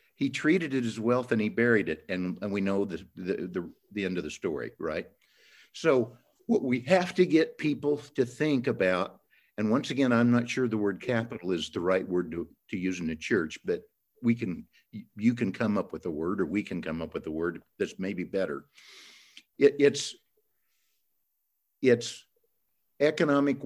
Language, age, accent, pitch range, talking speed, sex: English, 60-79, American, 100-135 Hz, 195 wpm, male